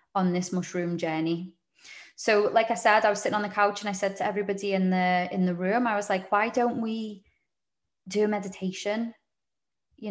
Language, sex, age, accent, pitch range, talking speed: English, female, 20-39, British, 190-235 Hz, 200 wpm